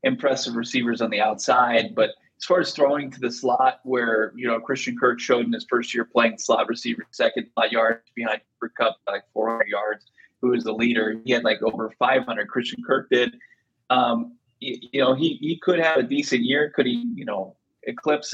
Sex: male